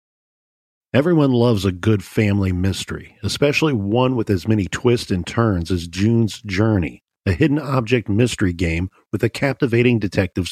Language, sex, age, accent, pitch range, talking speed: English, male, 50-69, American, 100-130 Hz, 150 wpm